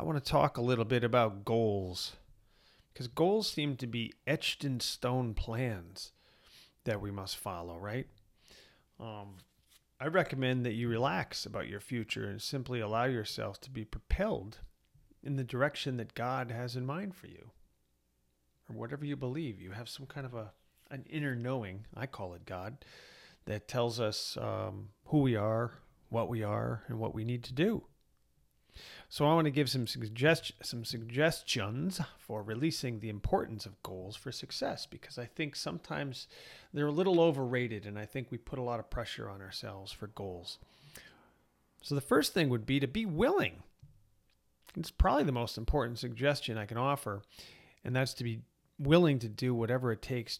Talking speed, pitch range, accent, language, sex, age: 175 wpm, 105-140 Hz, American, English, male, 40-59